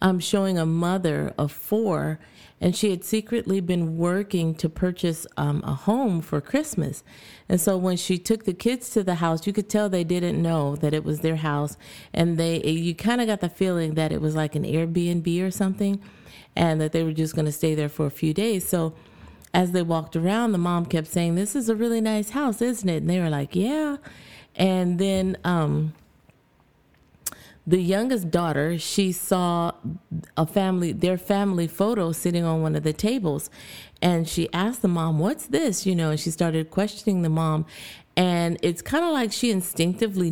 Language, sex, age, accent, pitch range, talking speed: English, female, 30-49, American, 160-195 Hz, 195 wpm